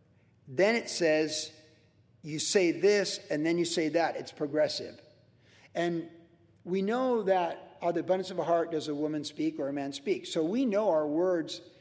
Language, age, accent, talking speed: English, 50-69, American, 185 wpm